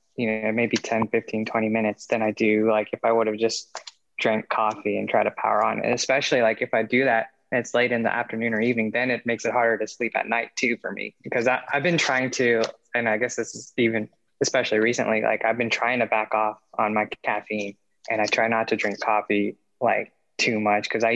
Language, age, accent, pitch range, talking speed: English, 20-39, American, 110-125 Hz, 245 wpm